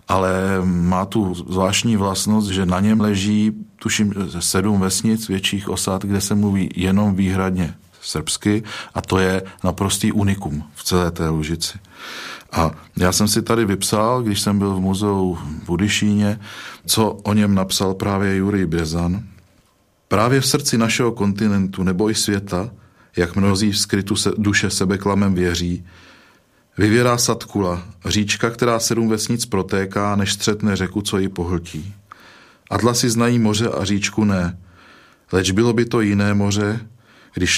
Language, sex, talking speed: Czech, male, 145 wpm